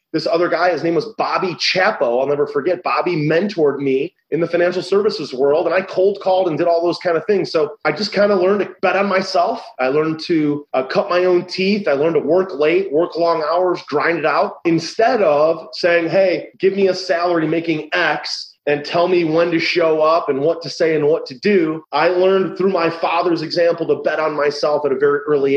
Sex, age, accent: male, 30-49, American